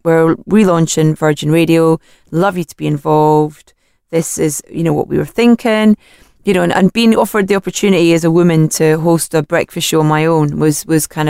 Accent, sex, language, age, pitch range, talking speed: British, female, English, 30-49, 150-175 Hz, 205 wpm